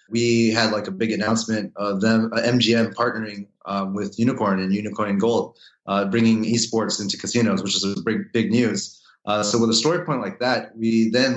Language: English